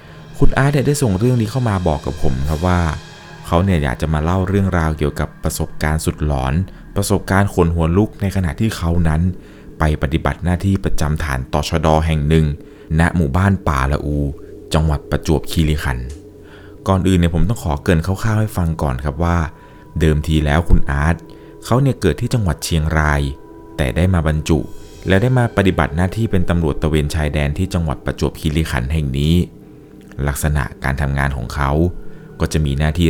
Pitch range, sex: 75-95 Hz, male